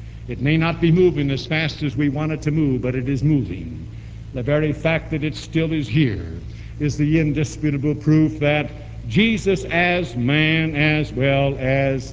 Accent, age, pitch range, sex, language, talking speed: American, 60-79, 120-165 Hz, male, English, 180 wpm